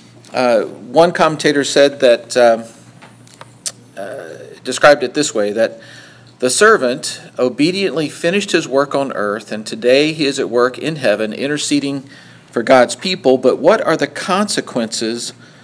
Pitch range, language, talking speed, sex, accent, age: 115-145 Hz, English, 140 wpm, male, American, 50-69